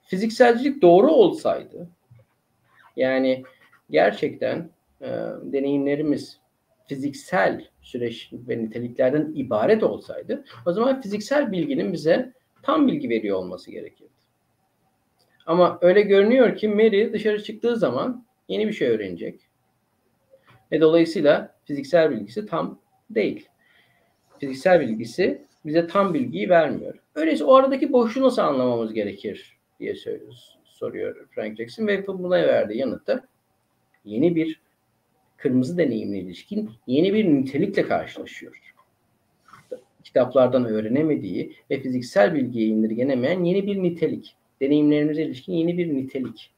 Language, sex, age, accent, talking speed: Turkish, male, 50-69, native, 110 wpm